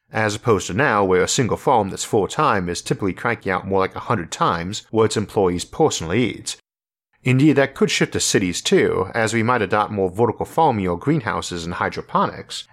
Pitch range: 95-125 Hz